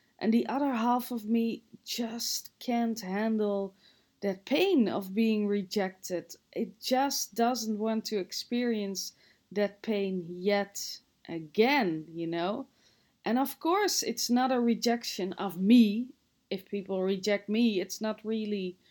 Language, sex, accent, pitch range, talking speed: English, female, Dutch, 195-245 Hz, 135 wpm